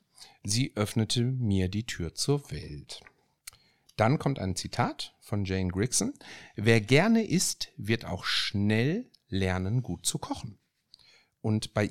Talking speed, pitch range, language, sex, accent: 130 wpm, 100-145 Hz, German, male, German